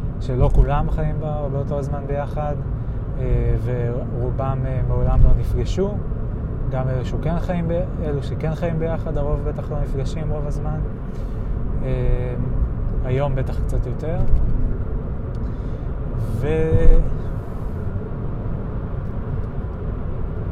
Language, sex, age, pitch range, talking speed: Hebrew, male, 20-39, 115-135 Hz, 95 wpm